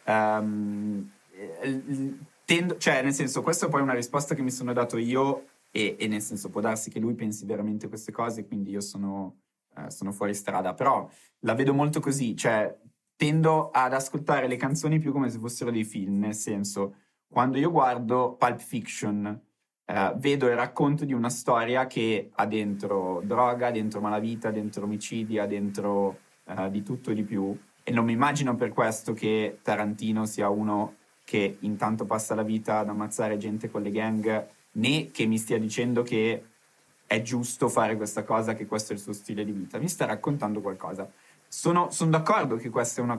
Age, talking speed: 20-39, 180 wpm